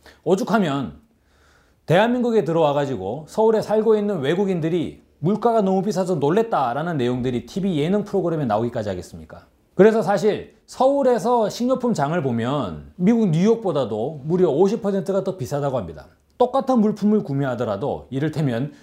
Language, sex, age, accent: Korean, male, 40-59, native